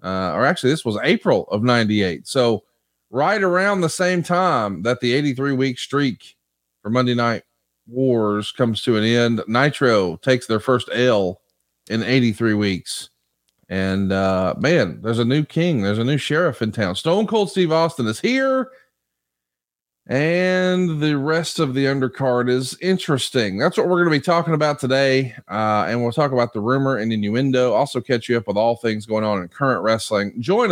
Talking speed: 180 wpm